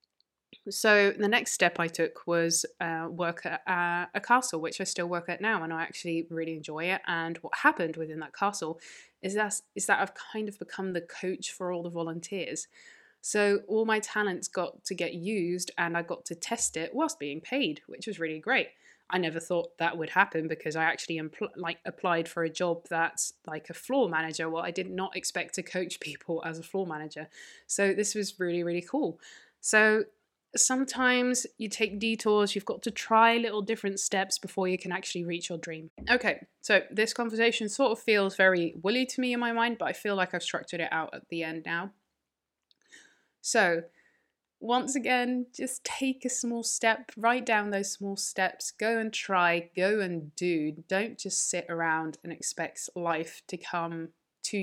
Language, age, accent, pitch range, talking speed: English, 20-39, British, 170-220 Hz, 195 wpm